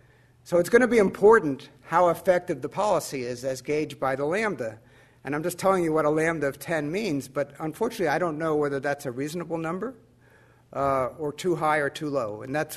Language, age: English, 50-69